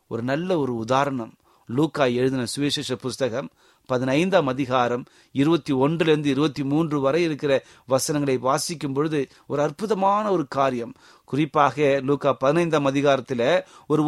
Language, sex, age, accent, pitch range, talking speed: Tamil, male, 30-49, native, 125-160 Hz, 110 wpm